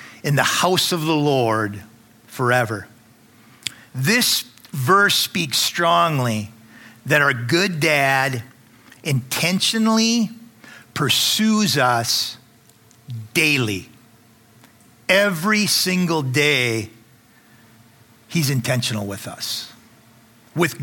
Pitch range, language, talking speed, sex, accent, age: 115-170 Hz, English, 80 wpm, male, American, 50-69